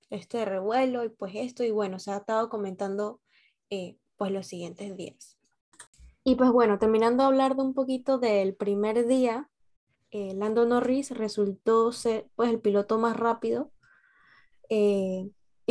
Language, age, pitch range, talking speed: Spanish, 10-29, 205-240 Hz, 150 wpm